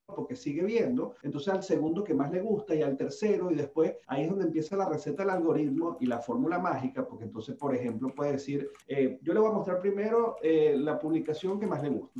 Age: 40-59